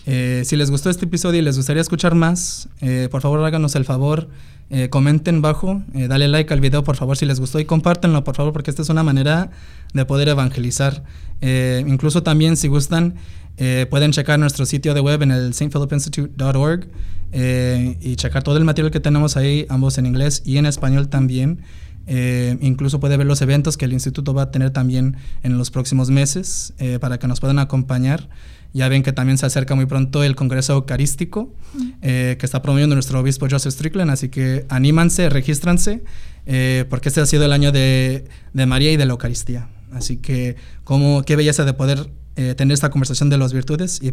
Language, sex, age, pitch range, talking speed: Spanish, male, 20-39, 130-150 Hz, 200 wpm